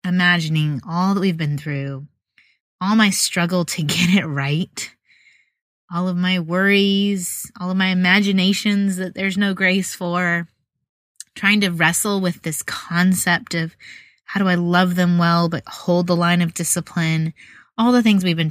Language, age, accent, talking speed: English, 20-39, American, 160 wpm